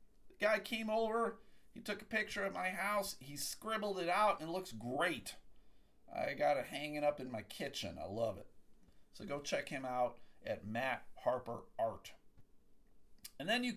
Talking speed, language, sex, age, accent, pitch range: 175 wpm, English, male, 50-69, American, 145-225 Hz